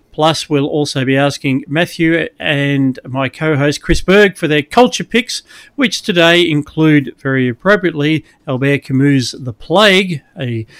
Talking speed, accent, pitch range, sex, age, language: 140 wpm, Australian, 135-180 Hz, male, 40-59, English